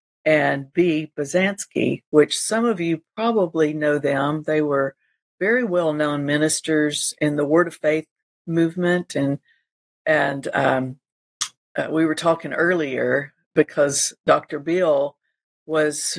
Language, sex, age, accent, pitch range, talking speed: English, female, 50-69, American, 145-175 Hz, 120 wpm